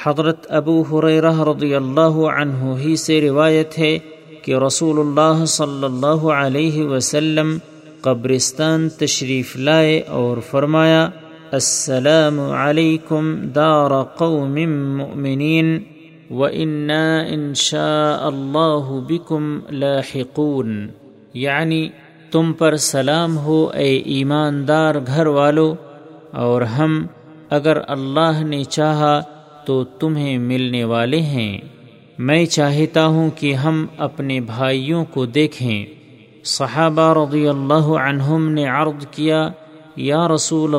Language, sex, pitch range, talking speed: Urdu, male, 140-160 Hz, 100 wpm